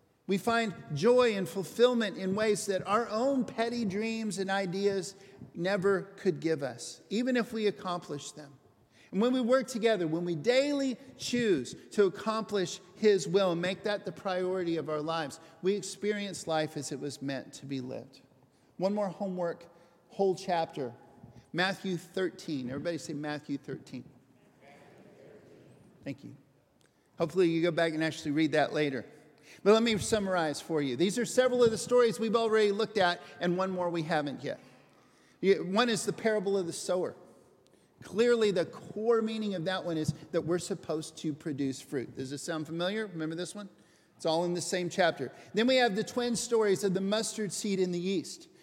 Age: 50-69